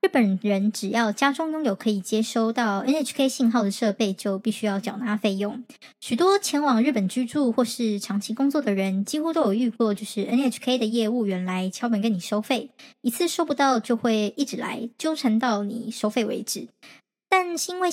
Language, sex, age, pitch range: Chinese, male, 20-39, 215-275 Hz